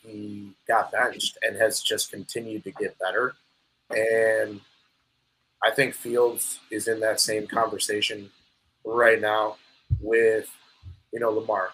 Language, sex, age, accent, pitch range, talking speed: English, male, 30-49, American, 105-135 Hz, 130 wpm